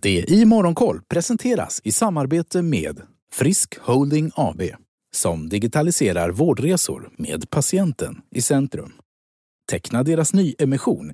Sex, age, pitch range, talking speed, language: male, 30-49, 160-225 Hz, 115 wpm, Swedish